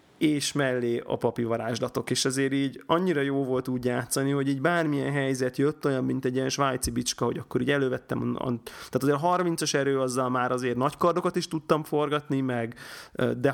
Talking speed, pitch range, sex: 200 wpm, 125-145 Hz, male